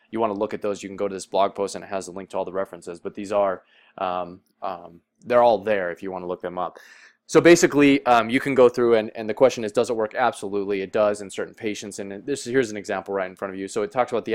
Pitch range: 100-125 Hz